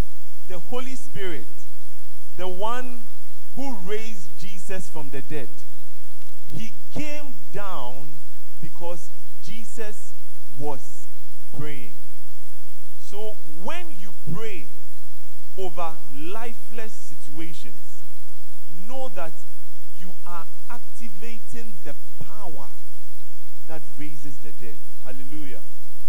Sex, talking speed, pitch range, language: male, 85 wpm, 150-215 Hz, English